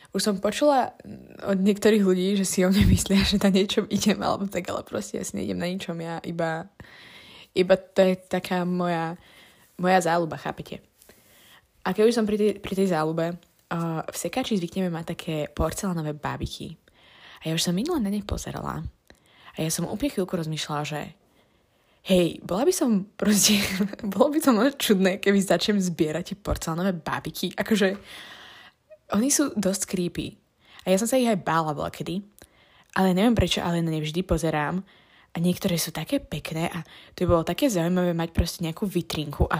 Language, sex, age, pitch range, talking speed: Slovak, female, 20-39, 165-205 Hz, 170 wpm